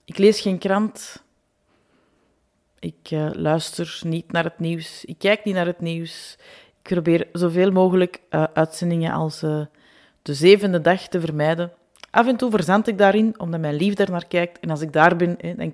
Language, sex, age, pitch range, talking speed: Dutch, female, 30-49, 160-195 Hz, 185 wpm